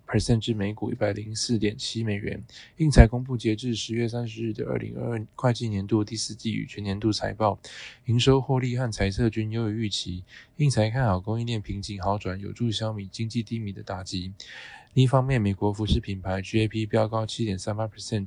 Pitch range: 105-120 Hz